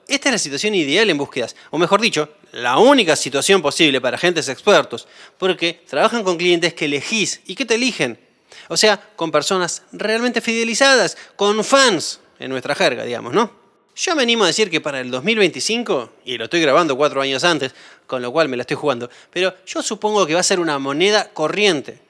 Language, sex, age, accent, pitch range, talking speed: Spanish, male, 20-39, Argentinian, 140-215 Hz, 200 wpm